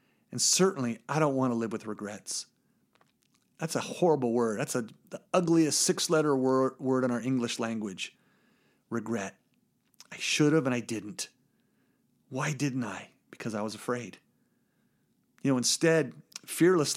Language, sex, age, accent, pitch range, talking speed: English, male, 40-59, American, 135-210 Hz, 150 wpm